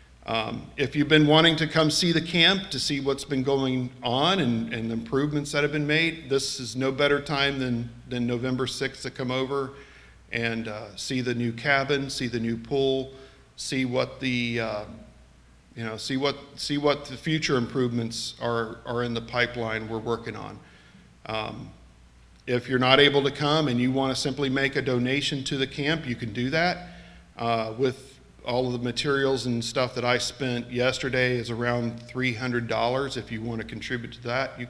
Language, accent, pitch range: English, American, 115-140 Hz